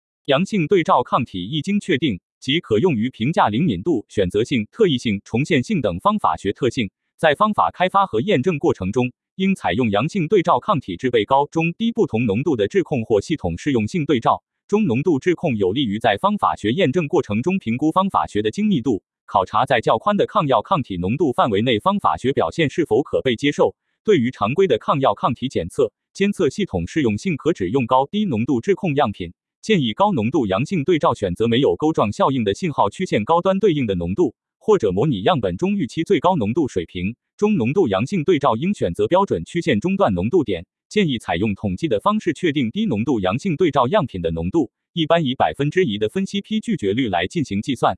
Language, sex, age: Chinese, male, 30-49